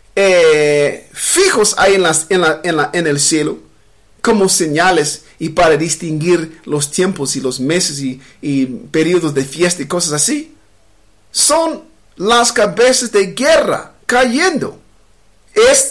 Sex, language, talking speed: male, English, 140 wpm